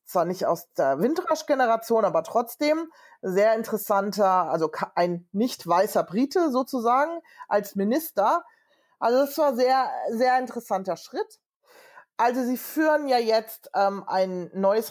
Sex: female